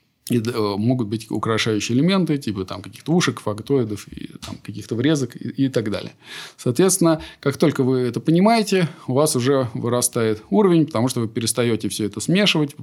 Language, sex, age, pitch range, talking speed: Russian, male, 20-39, 110-155 Hz, 175 wpm